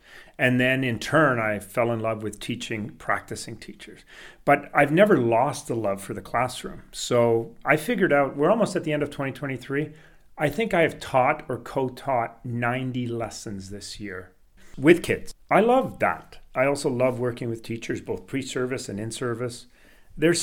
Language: Danish